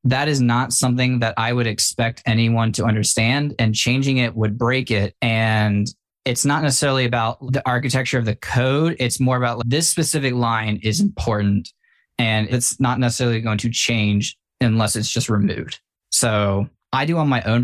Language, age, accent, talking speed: English, 20-39, American, 175 wpm